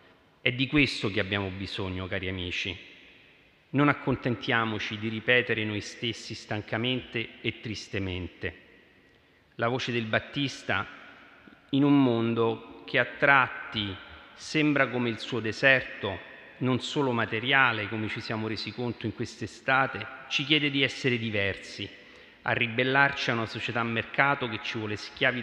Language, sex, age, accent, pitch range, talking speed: Italian, male, 40-59, native, 105-135 Hz, 135 wpm